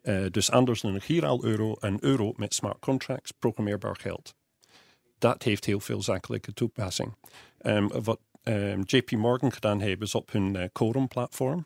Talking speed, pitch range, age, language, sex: 165 wpm, 100-120 Hz, 40-59, Dutch, male